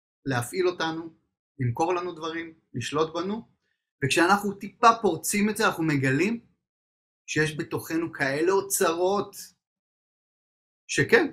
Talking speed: 100 wpm